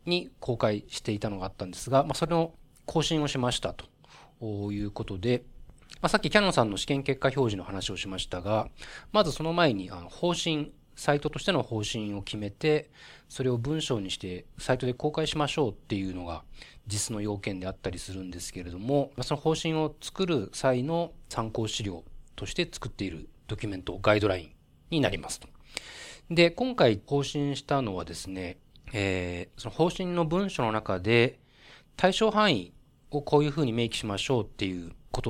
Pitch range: 100-150 Hz